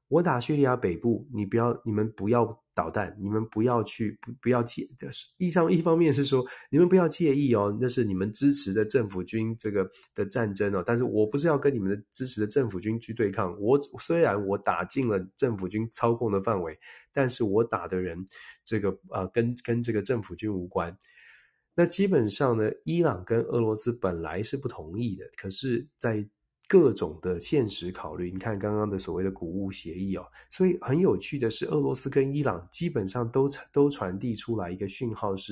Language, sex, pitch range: Chinese, male, 95-125 Hz